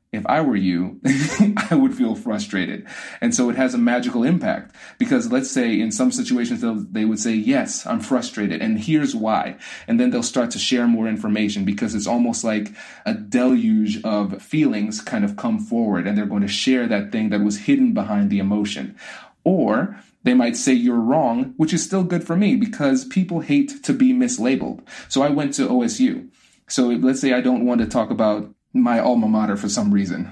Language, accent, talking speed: English, American, 200 wpm